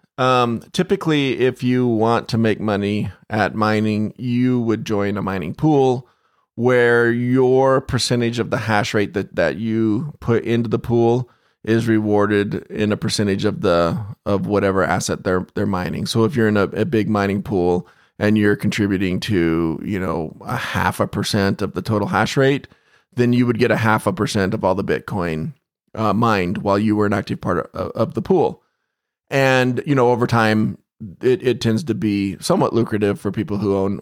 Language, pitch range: English, 100-125 Hz